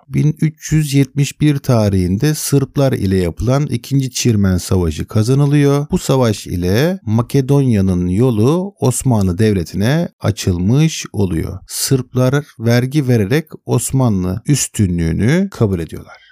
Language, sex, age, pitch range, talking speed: Turkish, male, 50-69, 100-145 Hz, 90 wpm